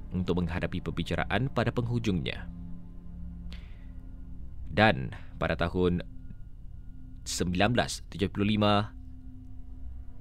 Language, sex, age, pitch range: Malay, male, 20-39, 85-110 Hz